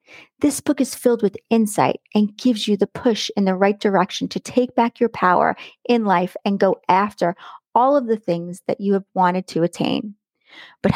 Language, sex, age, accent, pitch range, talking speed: English, female, 30-49, American, 185-230 Hz, 195 wpm